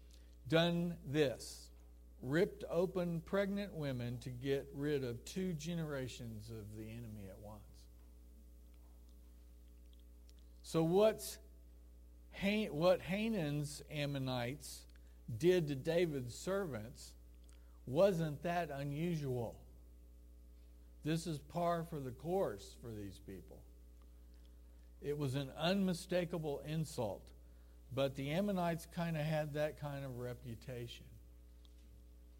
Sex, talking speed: male, 95 wpm